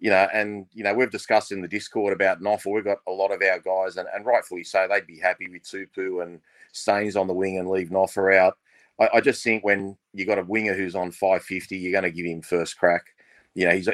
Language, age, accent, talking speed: English, 30-49, Australian, 255 wpm